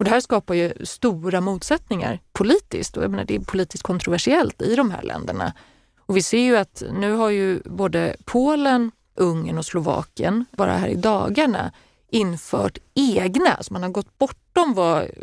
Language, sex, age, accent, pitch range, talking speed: Swedish, female, 30-49, native, 180-230 Hz, 175 wpm